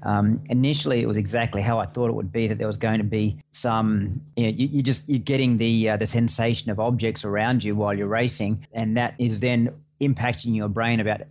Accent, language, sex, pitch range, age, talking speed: Australian, English, male, 105-120 Hz, 30-49, 235 wpm